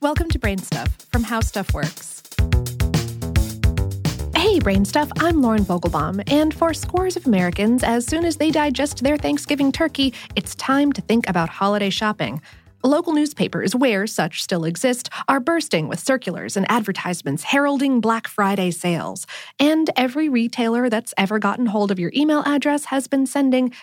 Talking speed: 155 wpm